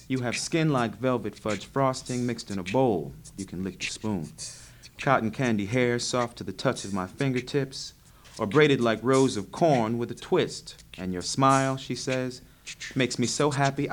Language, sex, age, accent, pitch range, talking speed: English, male, 30-49, American, 105-135 Hz, 190 wpm